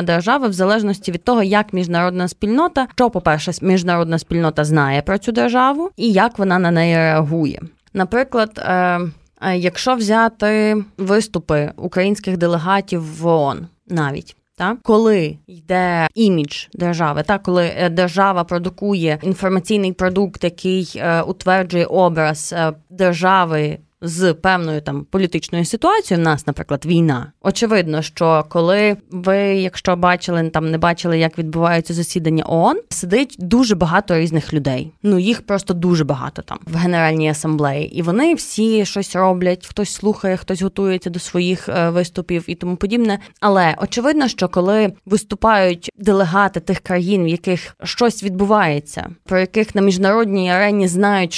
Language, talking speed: Ukrainian, 130 wpm